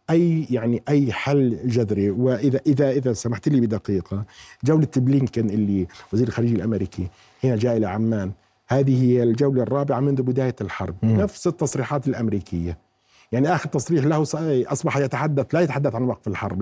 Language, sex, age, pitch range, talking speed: Arabic, male, 50-69, 110-130 Hz, 150 wpm